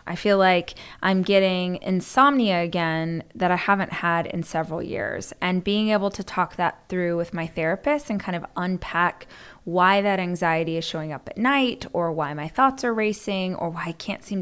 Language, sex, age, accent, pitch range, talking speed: English, female, 20-39, American, 180-230 Hz, 195 wpm